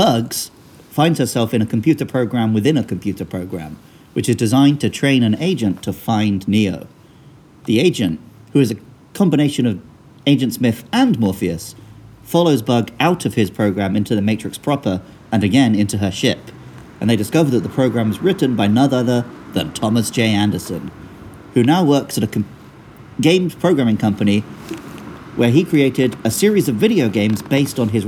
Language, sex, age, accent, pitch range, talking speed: English, male, 40-59, British, 105-135 Hz, 175 wpm